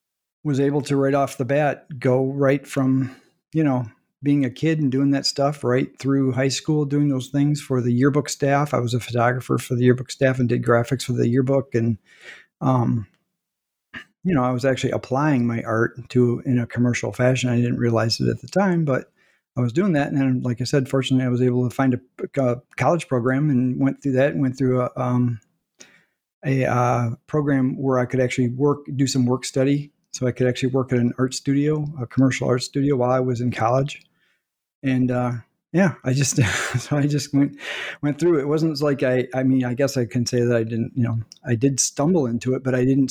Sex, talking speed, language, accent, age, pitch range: male, 225 wpm, English, American, 50-69, 120-140 Hz